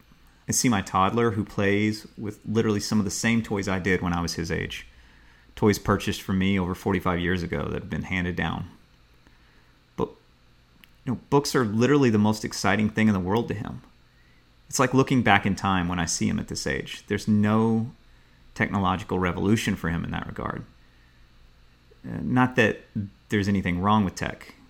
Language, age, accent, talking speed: English, 30-49, American, 185 wpm